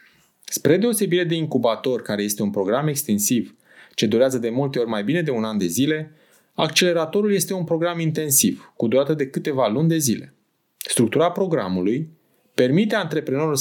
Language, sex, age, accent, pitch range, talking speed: Romanian, male, 30-49, native, 130-175 Hz, 165 wpm